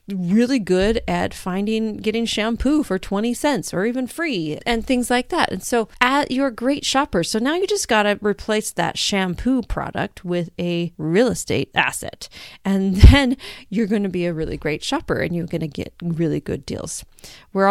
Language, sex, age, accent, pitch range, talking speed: English, female, 30-49, American, 180-235 Hz, 190 wpm